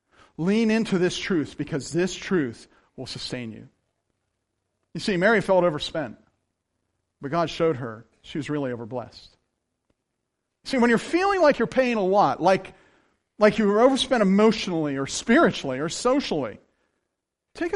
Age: 40-59